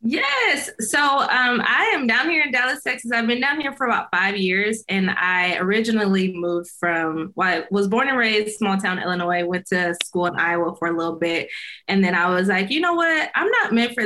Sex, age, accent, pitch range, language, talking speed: female, 20-39, American, 175-240 Hz, English, 230 wpm